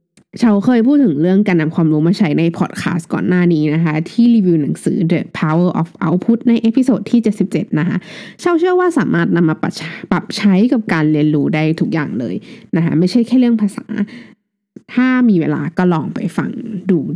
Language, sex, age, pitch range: Thai, female, 20-39, 170-235 Hz